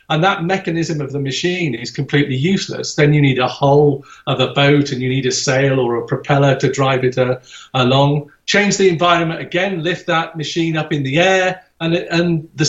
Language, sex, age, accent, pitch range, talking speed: English, male, 50-69, British, 135-165 Hz, 210 wpm